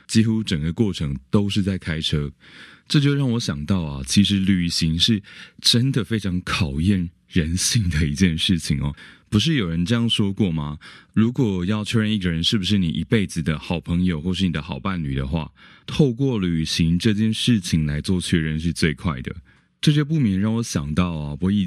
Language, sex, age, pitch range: Chinese, male, 20-39, 80-105 Hz